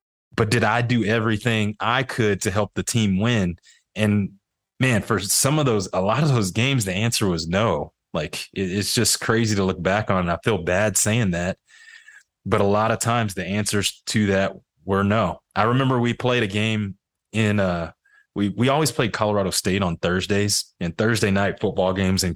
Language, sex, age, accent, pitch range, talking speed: English, male, 20-39, American, 95-110 Hz, 200 wpm